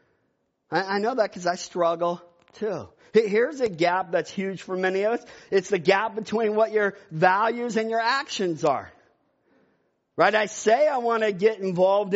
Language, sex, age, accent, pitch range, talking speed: English, male, 50-69, American, 160-215 Hz, 175 wpm